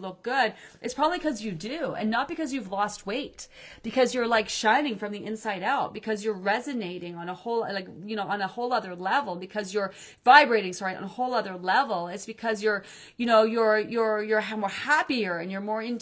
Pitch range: 195-250 Hz